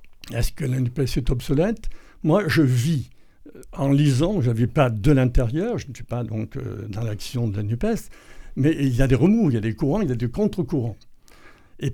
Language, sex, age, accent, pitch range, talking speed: French, male, 60-79, French, 125-175 Hz, 220 wpm